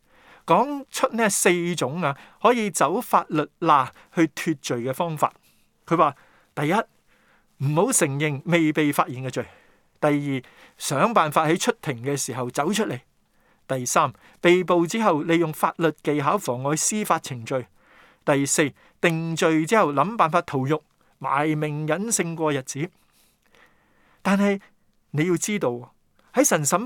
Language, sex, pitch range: Chinese, male, 140-190 Hz